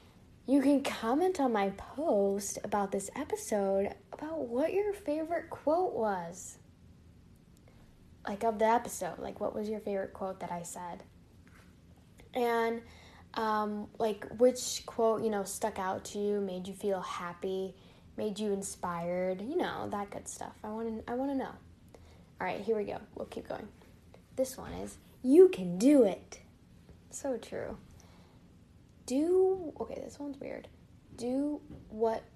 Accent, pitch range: American, 190-265 Hz